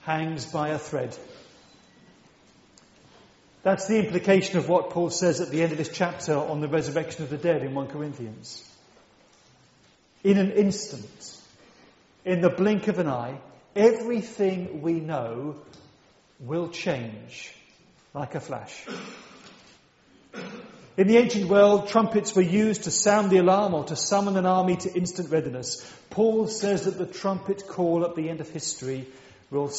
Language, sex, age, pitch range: English, male, 40-59, 150-195 Hz